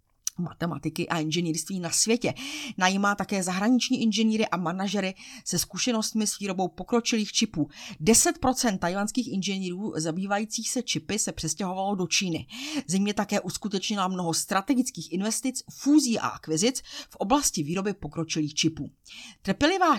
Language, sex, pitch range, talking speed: Czech, female, 170-235 Hz, 125 wpm